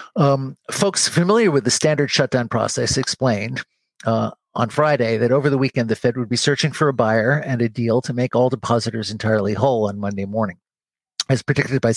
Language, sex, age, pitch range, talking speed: English, male, 50-69, 110-135 Hz, 195 wpm